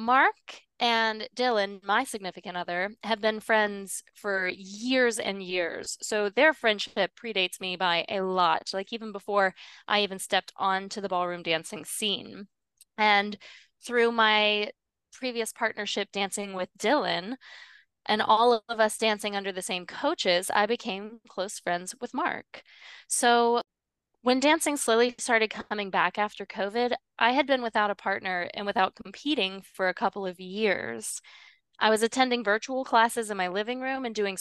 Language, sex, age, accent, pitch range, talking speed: English, female, 20-39, American, 195-240 Hz, 155 wpm